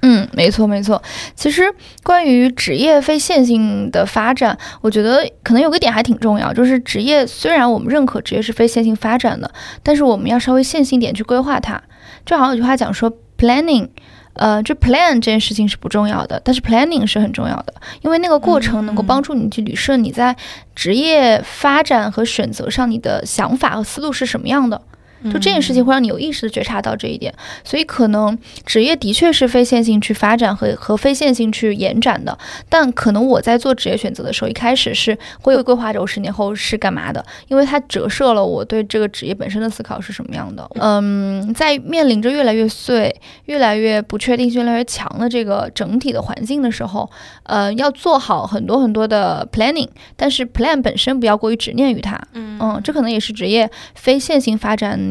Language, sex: Chinese, female